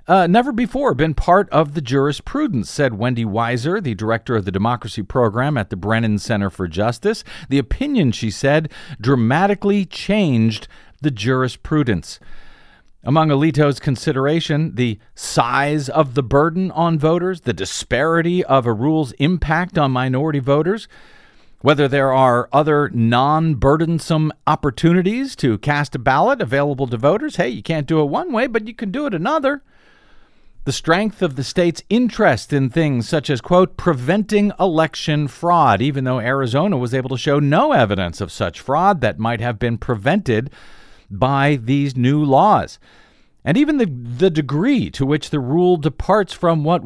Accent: American